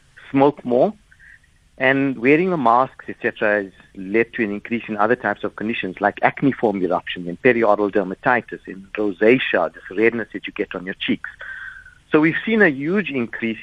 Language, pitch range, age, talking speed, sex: English, 100-120 Hz, 50-69, 175 wpm, male